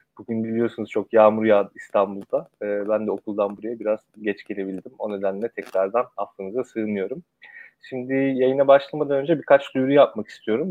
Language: Turkish